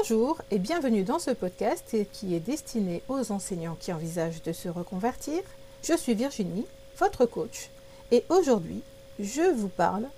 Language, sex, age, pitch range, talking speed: French, female, 50-69, 175-230 Hz, 155 wpm